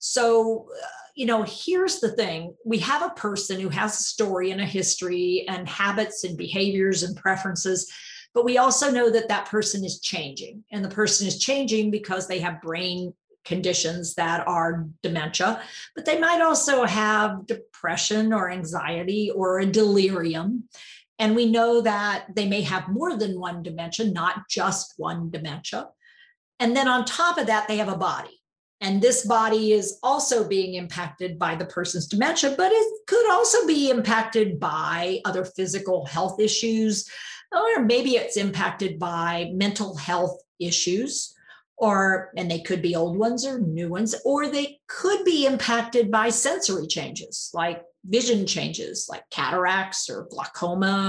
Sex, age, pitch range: female, 50-69, 180-230 Hz